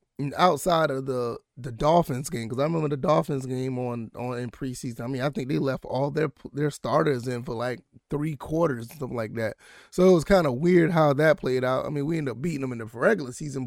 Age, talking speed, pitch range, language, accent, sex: 20-39, 240 wpm, 130-170 Hz, English, American, male